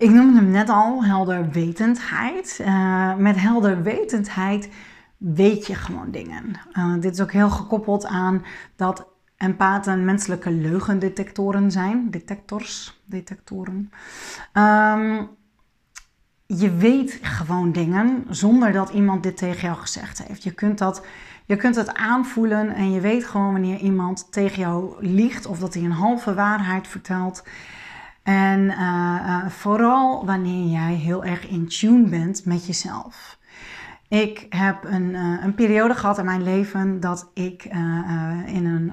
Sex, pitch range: female, 185-215 Hz